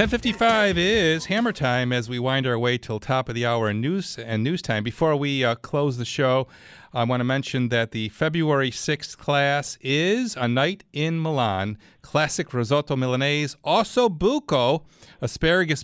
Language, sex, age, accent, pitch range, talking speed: English, male, 40-59, American, 115-150 Hz, 170 wpm